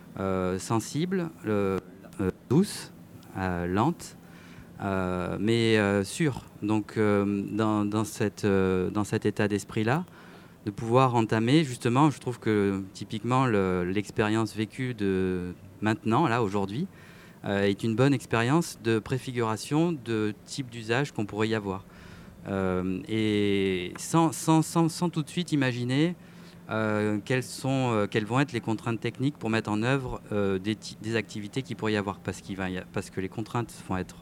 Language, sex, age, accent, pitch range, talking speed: French, male, 40-59, French, 100-130 Hz, 165 wpm